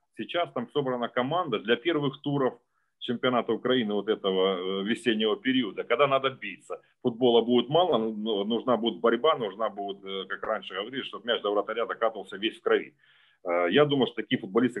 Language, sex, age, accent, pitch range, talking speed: Ukrainian, male, 30-49, native, 95-145 Hz, 165 wpm